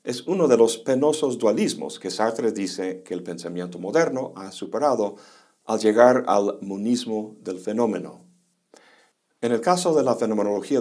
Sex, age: male, 50-69